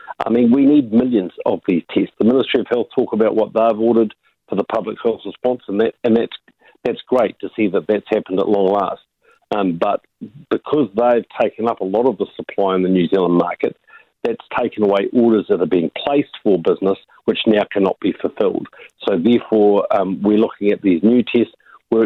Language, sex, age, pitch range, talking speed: English, male, 50-69, 95-120 Hz, 210 wpm